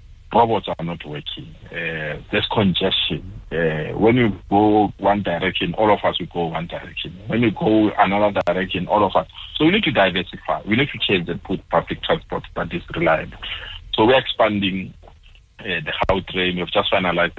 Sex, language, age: male, English, 60-79